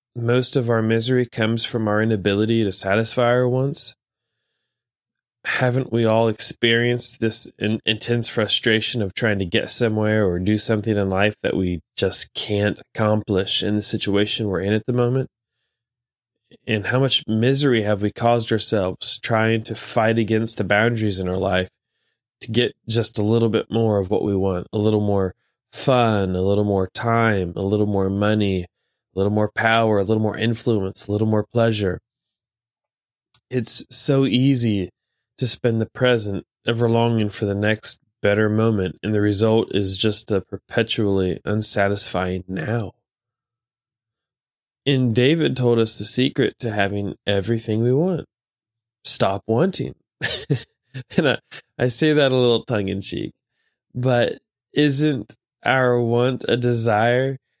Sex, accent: male, American